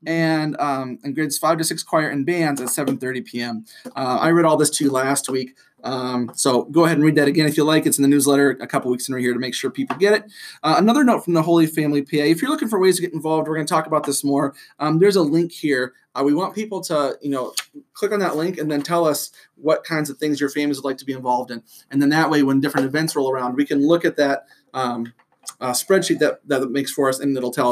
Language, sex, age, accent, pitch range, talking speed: English, male, 30-49, American, 135-165 Hz, 280 wpm